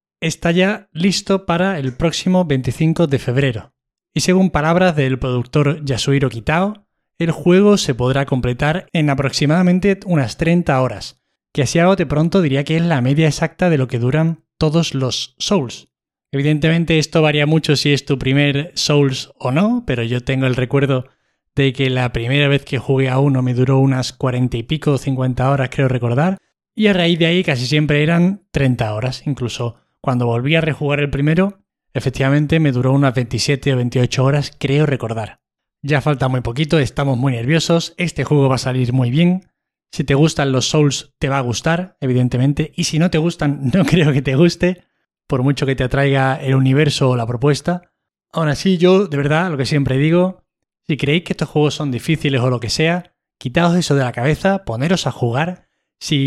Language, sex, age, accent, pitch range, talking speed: Spanish, male, 20-39, Spanish, 130-165 Hz, 190 wpm